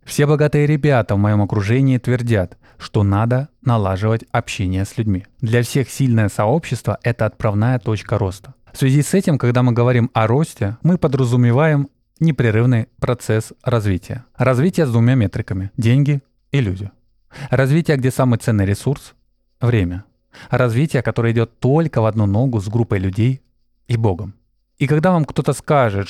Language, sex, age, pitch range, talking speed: Russian, male, 20-39, 110-135 Hz, 150 wpm